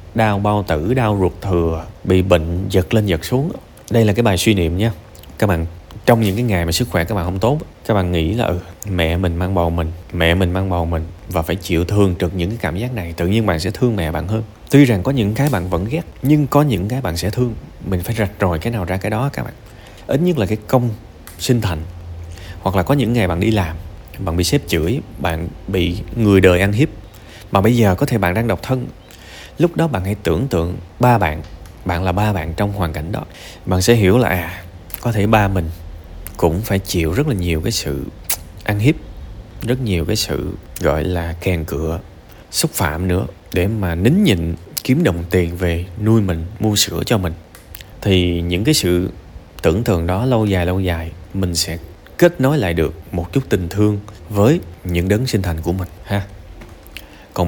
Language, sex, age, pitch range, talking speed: Vietnamese, male, 20-39, 85-110 Hz, 220 wpm